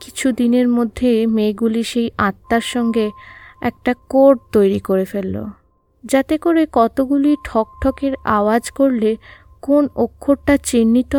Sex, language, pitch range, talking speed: female, Bengali, 195-270 Hz, 115 wpm